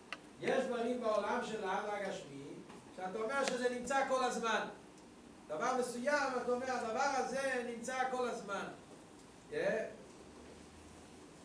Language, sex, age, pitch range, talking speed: Hebrew, male, 40-59, 200-250 Hz, 115 wpm